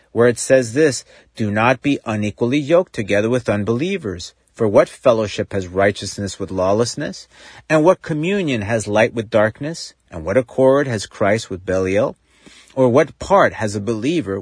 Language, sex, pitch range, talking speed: English, male, 100-140 Hz, 160 wpm